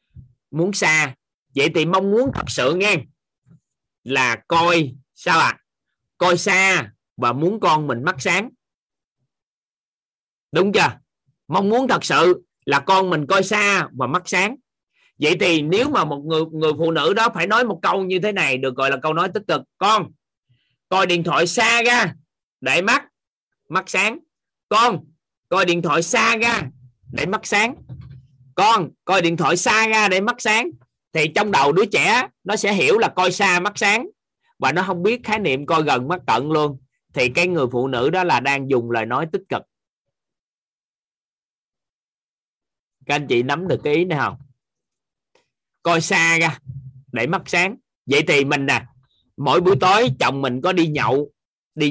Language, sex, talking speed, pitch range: Vietnamese, male, 175 wpm, 135-195 Hz